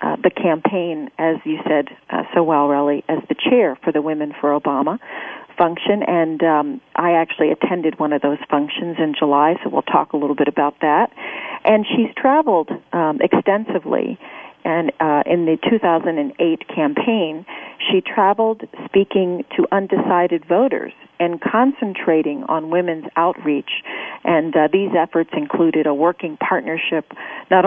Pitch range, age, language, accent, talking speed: 155-185 Hz, 40-59, English, American, 150 wpm